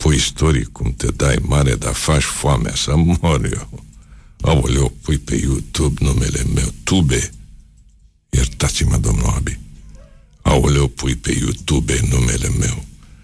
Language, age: Romanian, 60-79